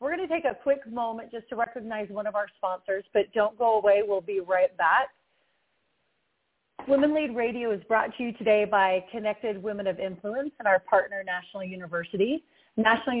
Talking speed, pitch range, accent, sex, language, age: 180 wpm, 190-245 Hz, American, female, English, 30-49